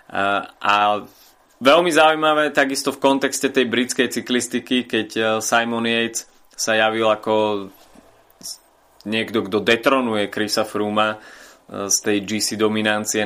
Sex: male